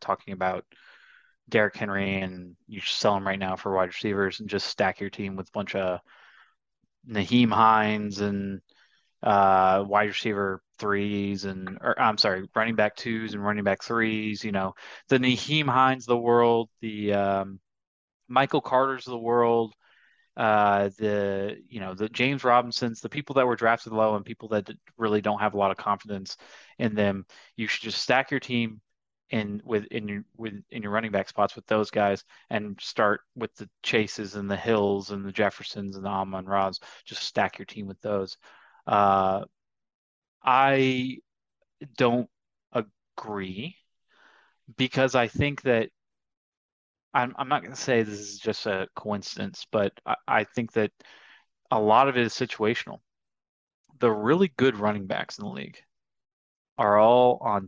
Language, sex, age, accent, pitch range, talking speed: English, male, 20-39, American, 100-120 Hz, 165 wpm